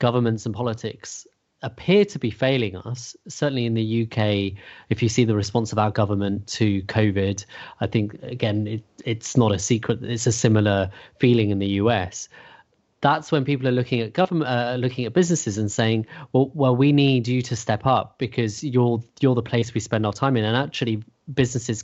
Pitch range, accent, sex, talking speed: 110-130 Hz, British, male, 195 wpm